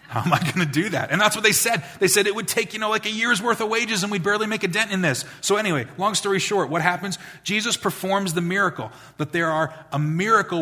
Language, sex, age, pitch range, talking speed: English, male, 30-49, 145-185 Hz, 275 wpm